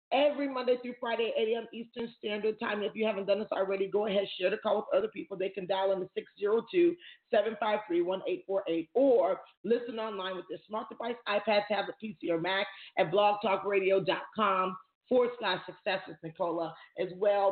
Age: 40-59